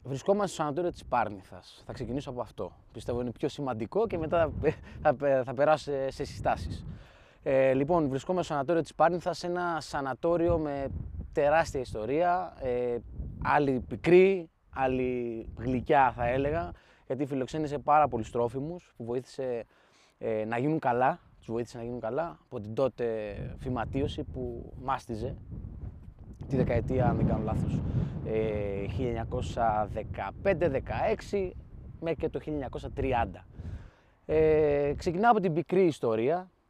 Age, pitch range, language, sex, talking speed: 20-39, 115-165 Hz, Greek, male, 130 wpm